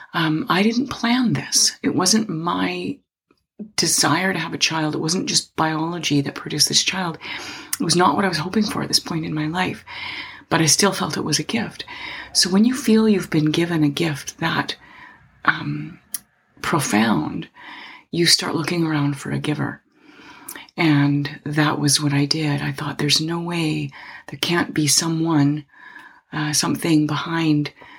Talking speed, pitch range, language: 170 wpm, 145-175 Hz, English